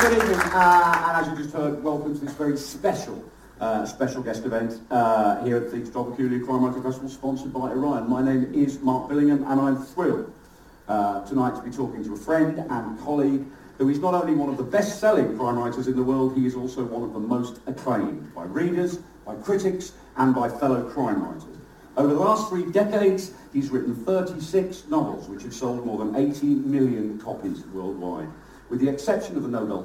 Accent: British